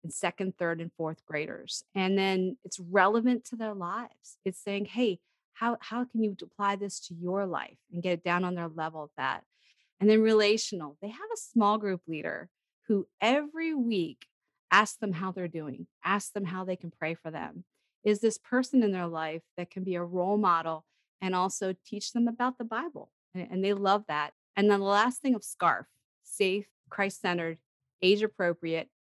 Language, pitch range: English, 170-210 Hz